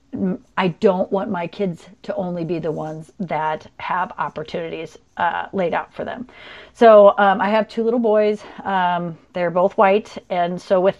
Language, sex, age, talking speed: English, female, 30-49, 175 wpm